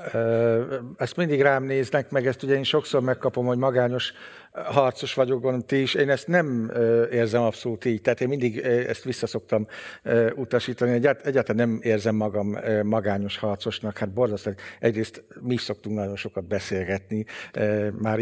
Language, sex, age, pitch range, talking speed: Hungarian, male, 60-79, 110-125 Hz, 155 wpm